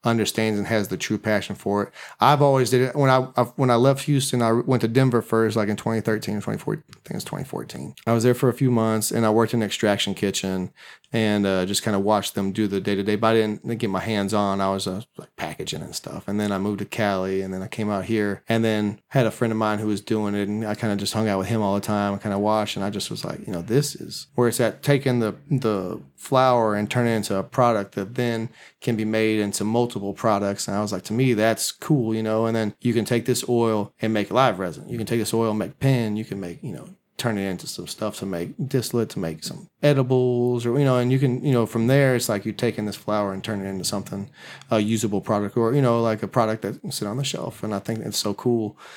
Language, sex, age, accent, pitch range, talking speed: English, male, 30-49, American, 105-120 Hz, 280 wpm